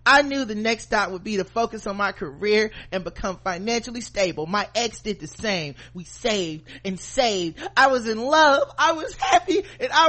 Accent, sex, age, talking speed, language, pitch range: American, male, 30-49, 200 wpm, English, 170-260 Hz